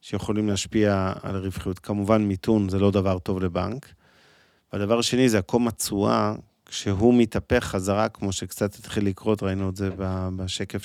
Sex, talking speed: male, 150 wpm